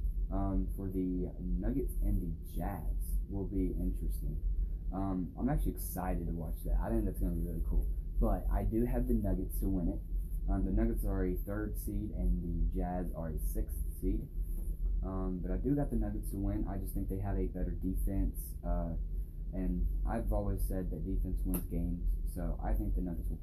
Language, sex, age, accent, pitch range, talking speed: English, male, 10-29, American, 80-95 Hz, 200 wpm